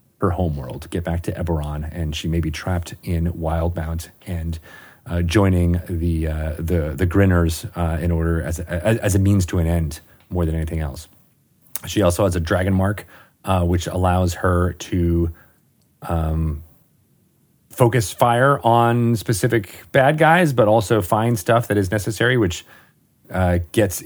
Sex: male